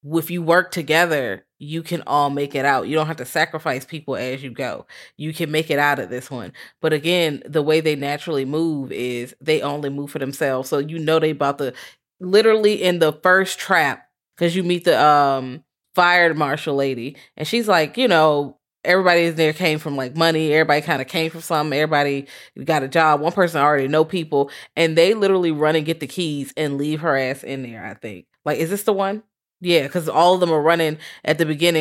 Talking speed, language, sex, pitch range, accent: 220 wpm, English, female, 145-175 Hz, American